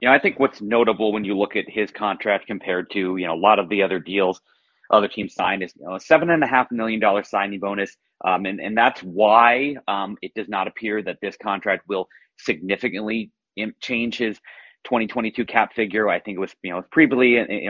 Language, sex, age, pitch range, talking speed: English, male, 30-49, 95-115 Hz, 220 wpm